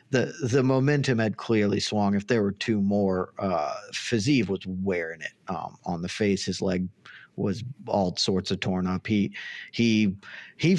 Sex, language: male, English